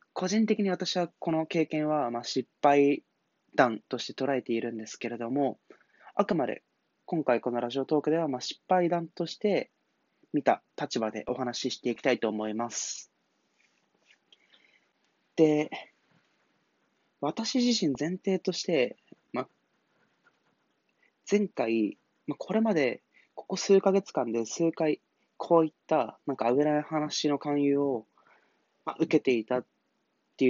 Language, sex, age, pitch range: Japanese, male, 20-39, 120-175 Hz